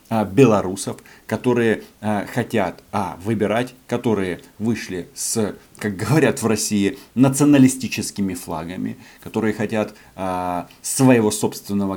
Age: 40-59